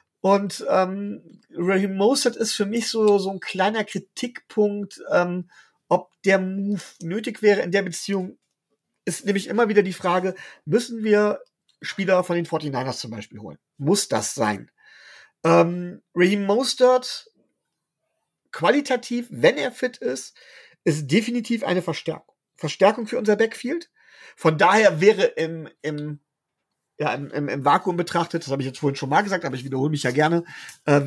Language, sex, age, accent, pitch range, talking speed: German, male, 40-59, German, 155-210 Hz, 155 wpm